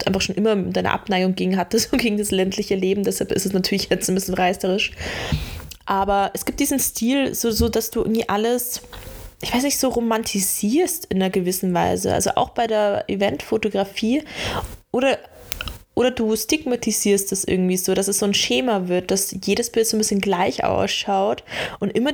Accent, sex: German, female